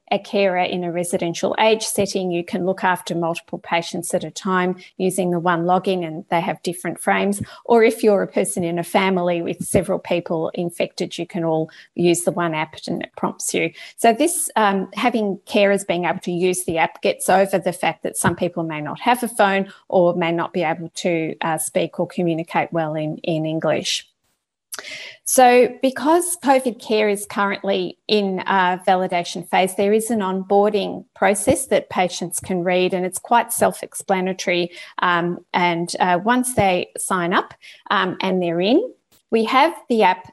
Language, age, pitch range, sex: English, 30-49, 175-215 Hz, female